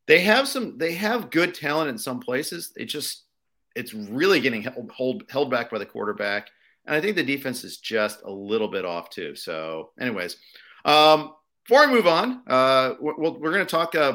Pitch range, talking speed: 130-185 Hz, 200 wpm